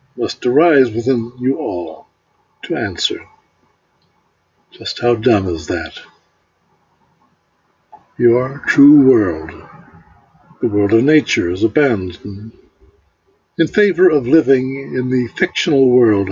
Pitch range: 110-160 Hz